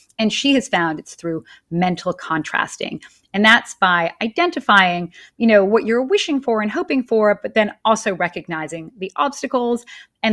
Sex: female